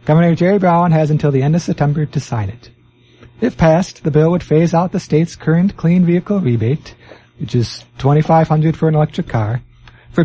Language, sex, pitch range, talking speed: English, male, 120-170 Hz, 195 wpm